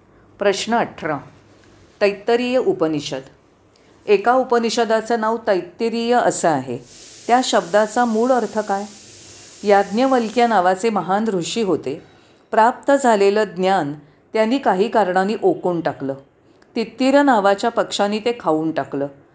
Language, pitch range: Marathi, 185-240 Hz